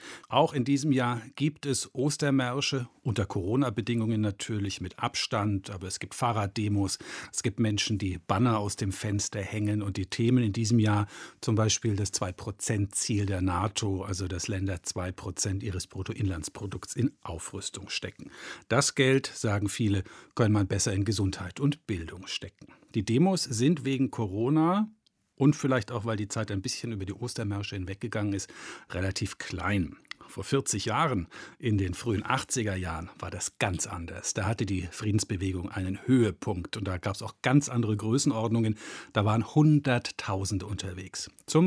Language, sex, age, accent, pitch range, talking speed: German, male, 50-69, German, 100-125 Hz, 155 wpm